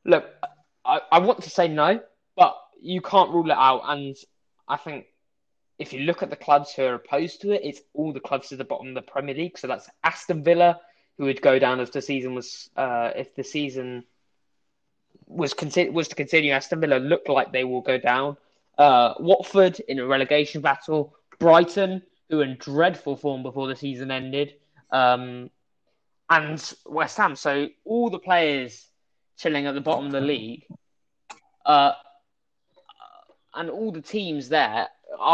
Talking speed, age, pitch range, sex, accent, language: 175 wpm, 20-39, 135-175 Hz, male, British, English